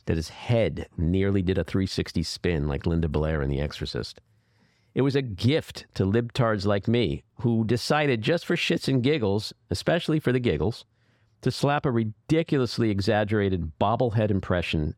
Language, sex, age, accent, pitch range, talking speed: English, male, 50-69, American, 85-115 Hz, 160 wpm